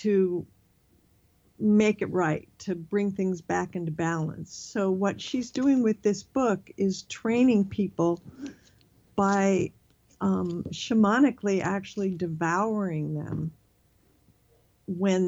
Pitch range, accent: 165-195 Hz, American